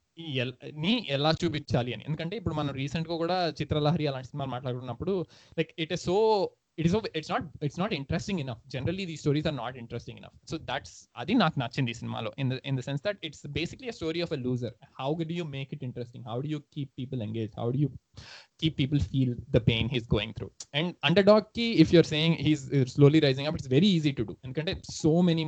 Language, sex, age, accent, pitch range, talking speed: Telugu, male, 20-39, native, 125-160 Hz, 200 wpm